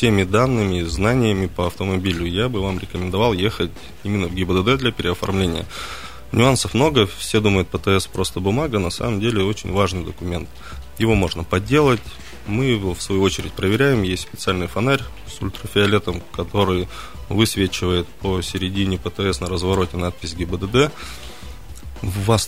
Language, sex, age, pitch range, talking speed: Russian, male, 20-39, 90-110 Hz, 140 wpm